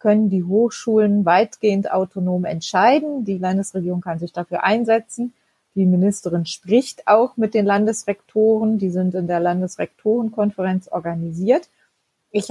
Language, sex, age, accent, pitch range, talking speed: German, female, 30-49, German, 185-225 Hz, 125 wpm